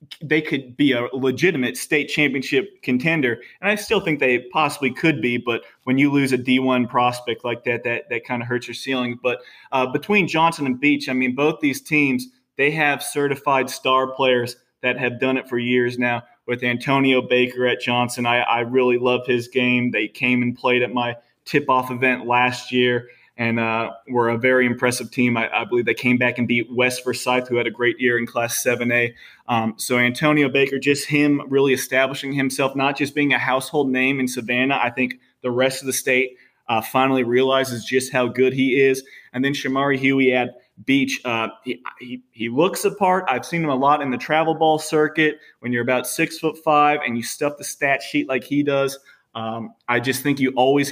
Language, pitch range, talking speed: English, 125-140 Hz, 205 wpm